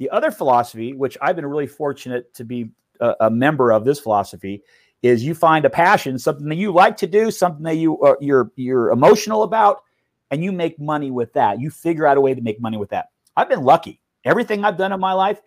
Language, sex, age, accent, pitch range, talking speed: English, male, 40-59, American, 125-170 Hz, 230 wpm